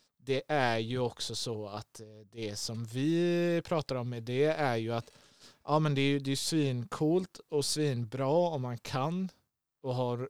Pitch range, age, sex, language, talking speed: 115-135 Hz, 20-39, male, Swedish, 175 wpm